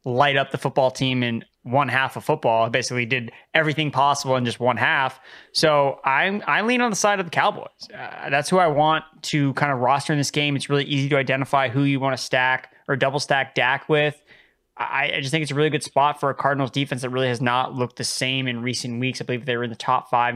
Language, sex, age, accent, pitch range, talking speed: English, male, 20-39, American, 125-145 Hz, 255 wpm